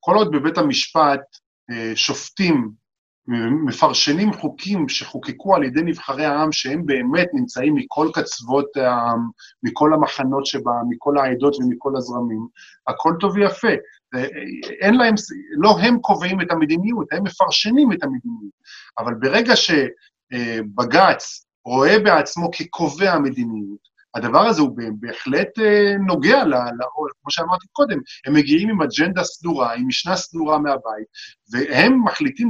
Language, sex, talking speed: Hebrew, male, 125 wpm